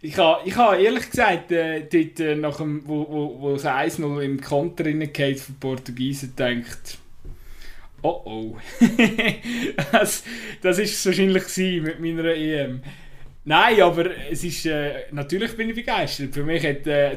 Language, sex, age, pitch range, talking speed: German, male, 20-39, 140-170 Hz, 145 wpm